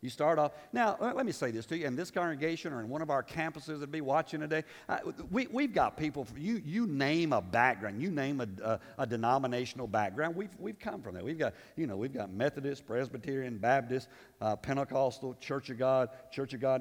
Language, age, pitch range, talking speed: English, 50-69, 130-175 Hz, 220 wpm